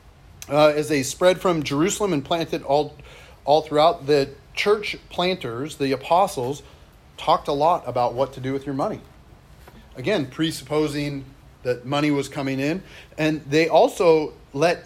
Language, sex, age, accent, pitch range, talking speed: English, male, 30-49, American, 135-165 Hz, 150 wpm